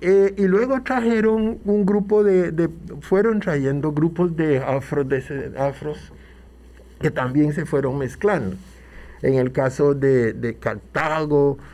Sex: male